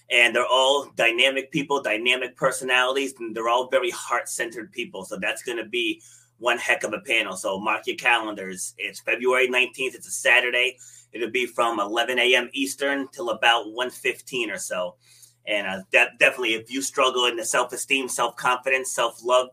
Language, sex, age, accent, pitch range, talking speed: English, male, 30-49, American, 125-170 Hz, 185 wpm